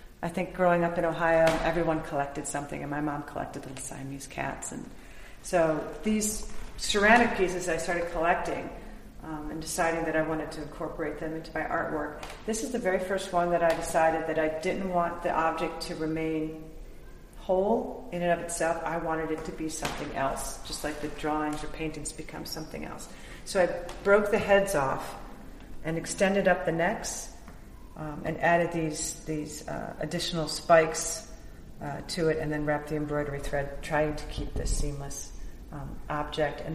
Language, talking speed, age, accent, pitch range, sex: English, 180 wpm, 40-59, American, 155-175 Hz, female